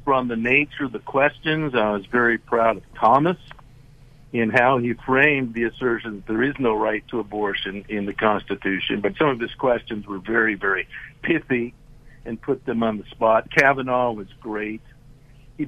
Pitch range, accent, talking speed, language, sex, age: 115-145 Hz, American, 180 wpm, English, male, 60-79